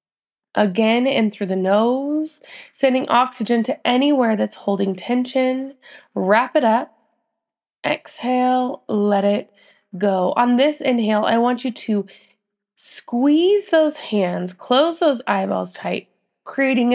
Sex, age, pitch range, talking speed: female, 20-39, 215-290 Hz, 120 wpm